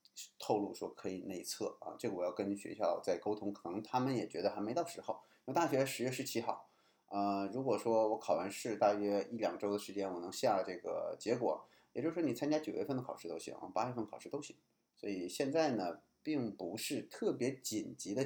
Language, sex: Chinese, male